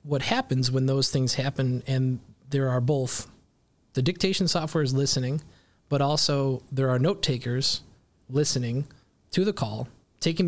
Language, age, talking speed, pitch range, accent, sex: English, 20-39, 150 wpm, 130-160 Hz, American, male